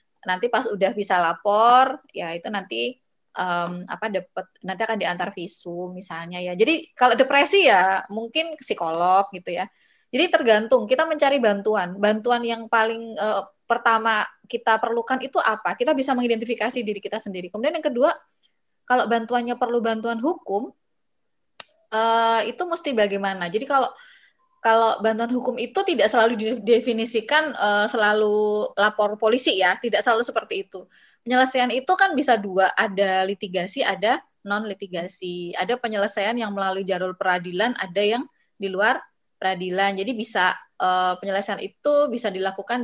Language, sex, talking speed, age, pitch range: Indonesian, female, 140 wpm, 20-39, 195-250 Hz